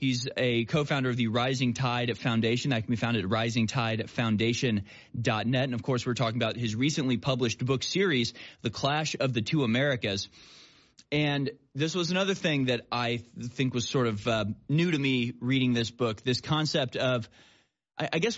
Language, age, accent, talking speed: English, 20-39, American, 180 wpm